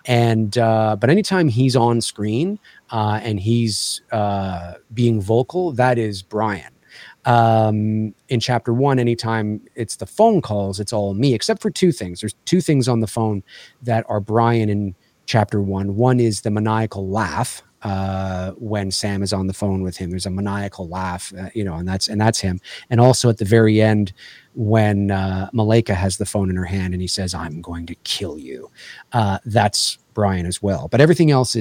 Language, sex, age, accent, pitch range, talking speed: English, male, 30-49, American, 105-125 Hz, 190 wpm